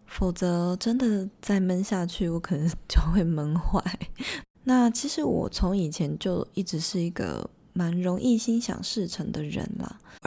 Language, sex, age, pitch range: Chinese, female, 20-39, 175-220 Hz